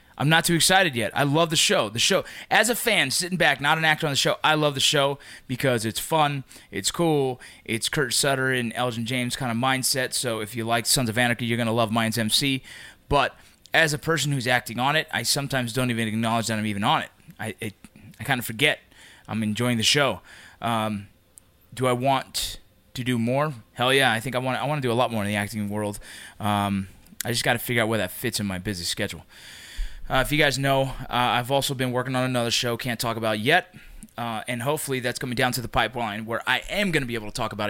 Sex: male